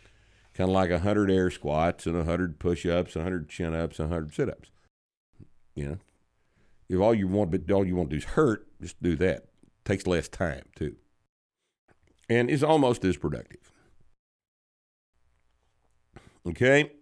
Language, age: English, 60-79